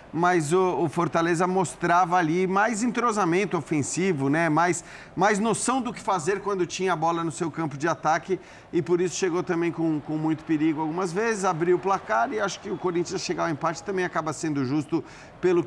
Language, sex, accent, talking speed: Portuguese, male, Brazilian, 195 wpm